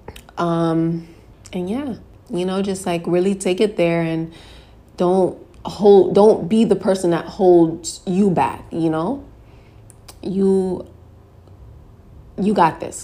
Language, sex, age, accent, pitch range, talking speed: English, female, 20-39, American, 160-225 Hz, 130 wpm